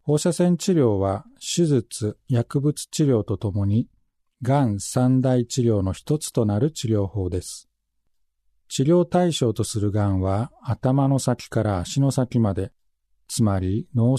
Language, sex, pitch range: Japanese, male, 100-145 Hz